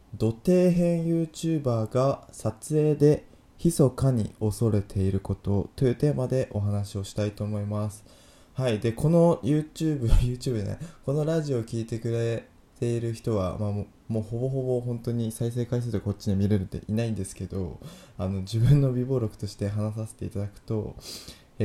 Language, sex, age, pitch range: Japanese, male, 20-39, 100-135 Hz